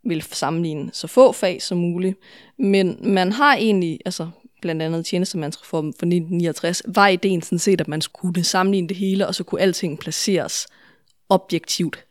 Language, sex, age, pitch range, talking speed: English, female, 20-39, 165-195 Hz, 170 wpm